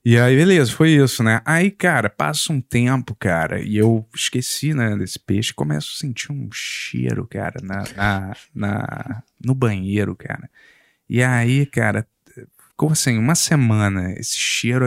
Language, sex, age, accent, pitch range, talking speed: Portuguese, male, 20-39, Brazilian, 100-130 Hz, 145 wpm